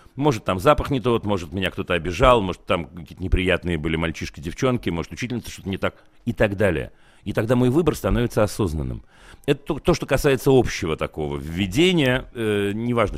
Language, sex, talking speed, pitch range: Russian, male, 180 wpm, 80-120 Hz